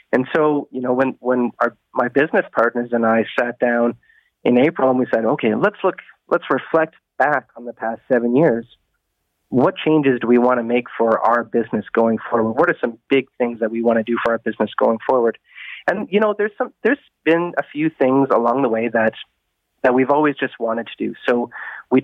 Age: 30-49